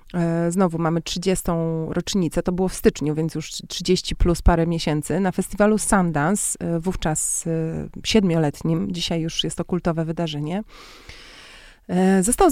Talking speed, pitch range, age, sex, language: 125 wpm, 170-200 Hz, 30-49, female, Polish